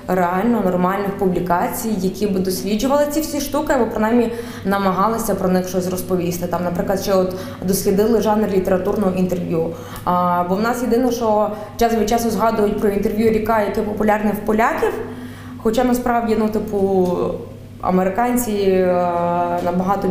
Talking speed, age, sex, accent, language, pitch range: 140 wpm, 20-39, female, native, Ukrainian, 175-215 Hz